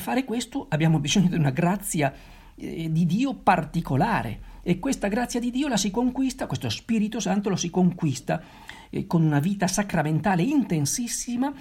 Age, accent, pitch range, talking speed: 50-69, native, 145-215 Hz, 160 wpm